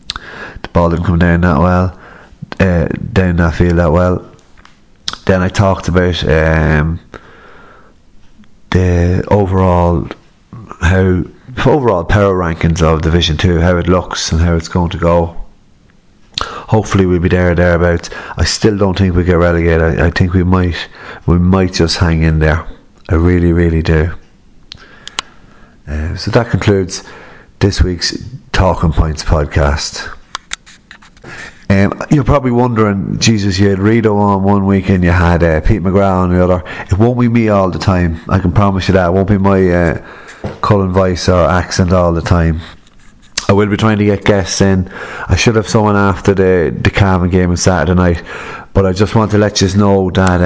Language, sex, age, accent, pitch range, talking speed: English, male, 30-49, Irish, 85-100 Hz, 170 wpm